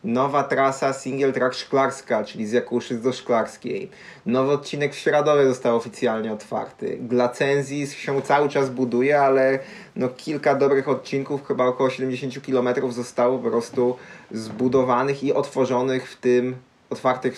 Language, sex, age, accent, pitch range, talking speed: Polish, male, 20-39, native, 120-140 Hz, 140 wpm